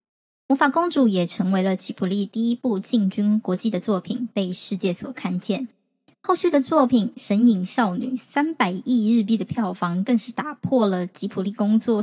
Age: 10-29